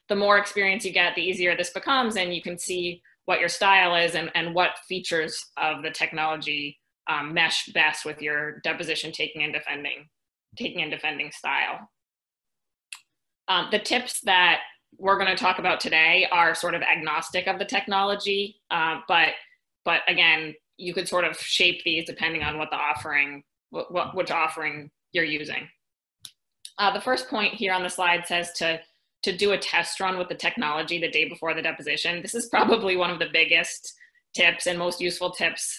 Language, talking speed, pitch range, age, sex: English, 185 wpm, 160-190 Hz, 20-39, female